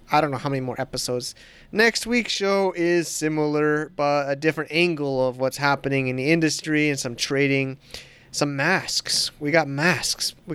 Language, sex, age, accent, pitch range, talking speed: English, male, 30-49, American, 135-170 Hz, 175 wpm